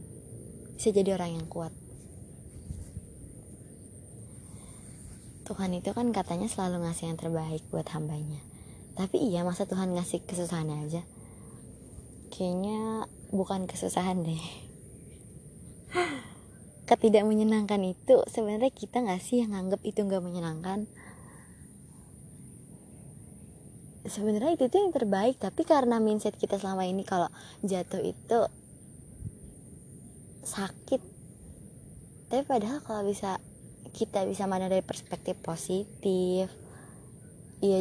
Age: 20-39